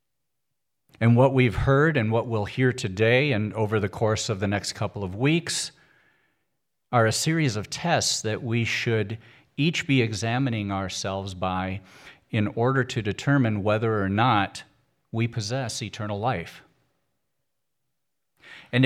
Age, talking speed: 50-69, 140 wpm